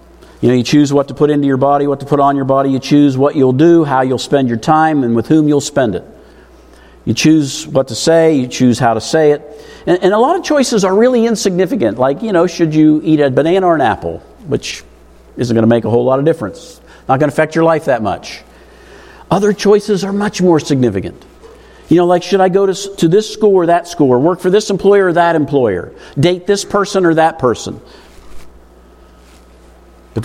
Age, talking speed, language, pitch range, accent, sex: 50-69, 230 wpm, English, 110-155 Hz, American, male